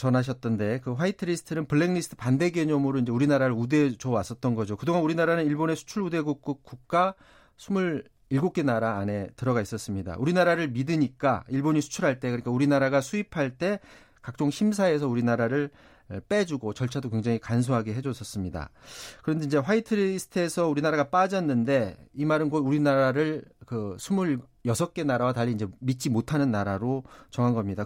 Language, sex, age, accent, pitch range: Korean, male, 40-59, native, 125-175 Hz